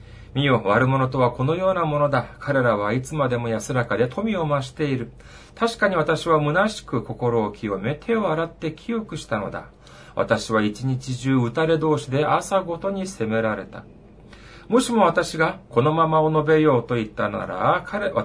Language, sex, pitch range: Japanese, male, 115-165 Hz